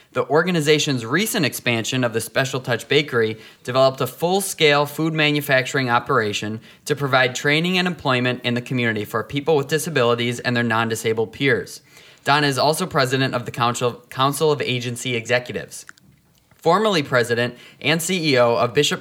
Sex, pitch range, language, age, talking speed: male, 120-155 Hz, English, 20-39, 150 wpm